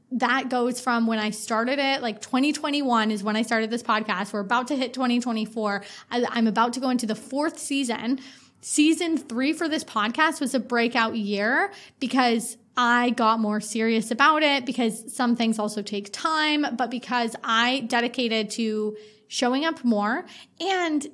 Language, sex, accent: English, female, American